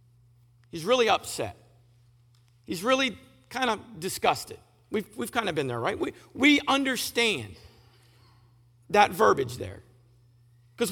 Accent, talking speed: American, 120 wpm